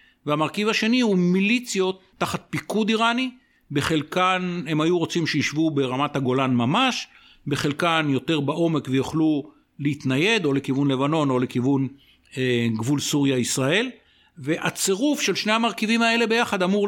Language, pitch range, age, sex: Hebrew, 140-195 Hz, 60-79, male